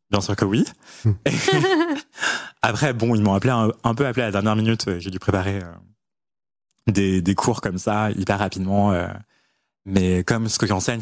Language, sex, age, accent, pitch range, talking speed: French, male, 20-39, French, 95-120 Hz, 170 wpm